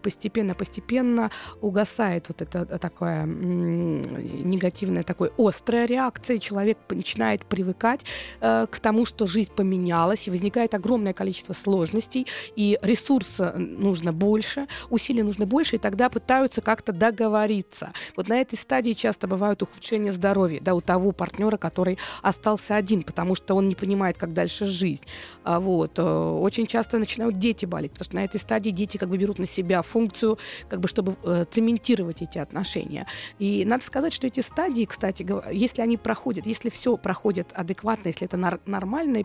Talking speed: 155 wpm